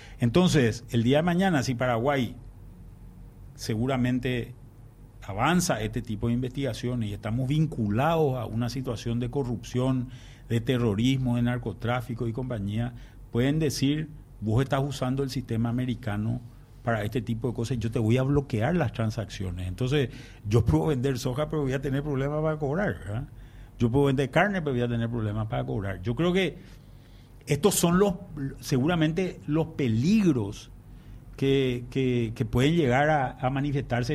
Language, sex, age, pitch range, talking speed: Spanish, male, 50-69, 115-150 Hz, 155 wpm